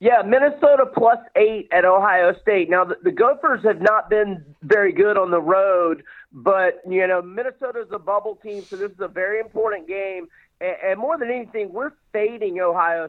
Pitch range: 180-220 Hz